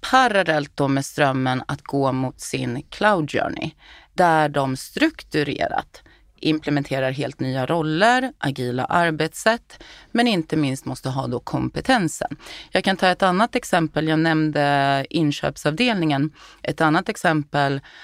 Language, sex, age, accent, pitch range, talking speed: Swedish, female, 30-49, native, 140-195 Hz, 125 wpm